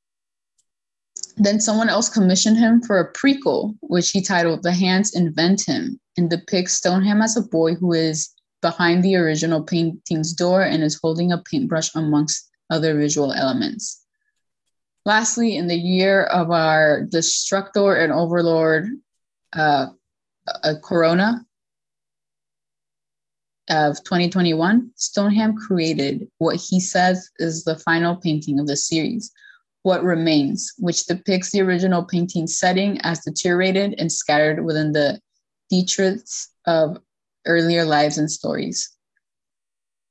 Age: 20-39